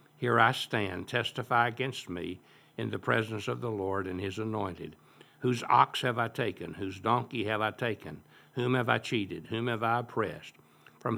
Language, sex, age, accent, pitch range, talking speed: English, male, 60-79, American, 95-120 Hz, 185 wpm